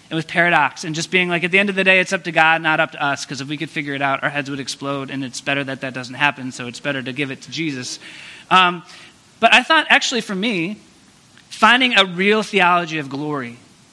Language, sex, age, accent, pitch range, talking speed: English, male, 30-49, American, 160-200 Hz, 260 wpm